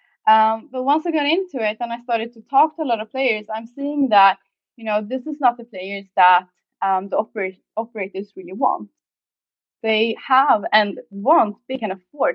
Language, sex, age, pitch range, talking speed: English, female, 20-39, 200-250 Hz, 200 wpm